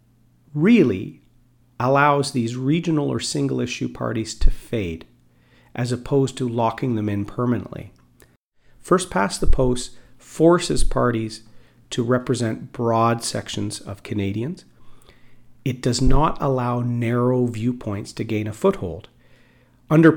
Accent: American